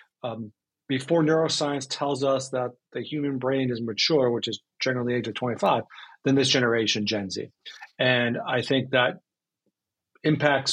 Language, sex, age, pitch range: English, male, 40-59, 125-150 Hz